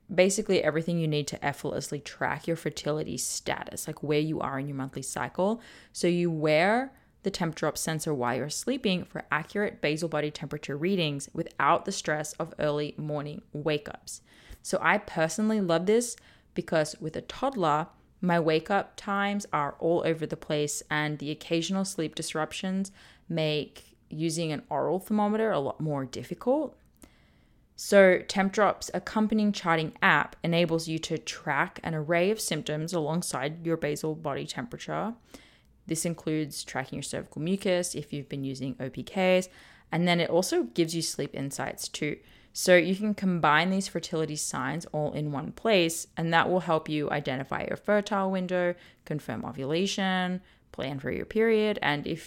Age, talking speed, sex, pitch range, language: 20-39, 160 wpm, female, 150-190 Hz, English